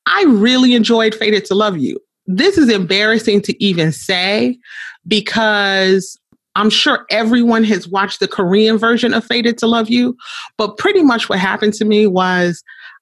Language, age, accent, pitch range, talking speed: English, 30-49, American, 195-240 Hz, 160 wpm